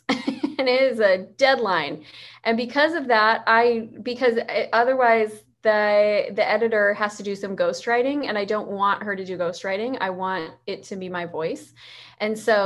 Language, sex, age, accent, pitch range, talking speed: English, female, 20-39, American, 195-240 Hz, 175 wpm